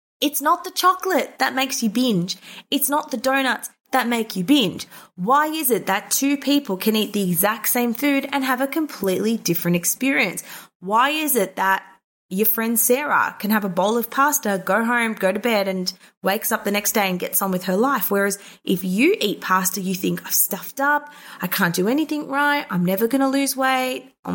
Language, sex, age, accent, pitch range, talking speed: English, female, 20-39, Australian, 195-265 Hz, 210 wpm